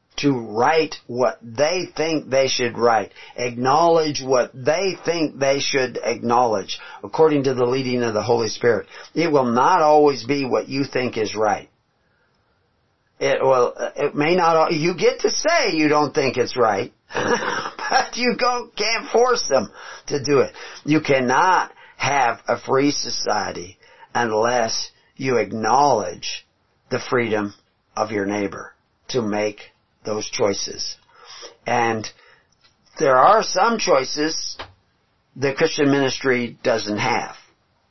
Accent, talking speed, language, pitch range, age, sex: American, 130 wpm, English, 115-155 Hz, 50-69, male